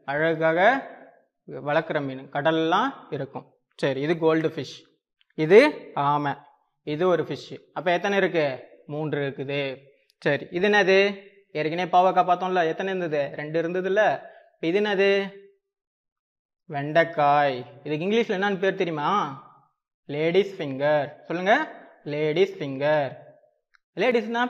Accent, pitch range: native, 150-200 Hz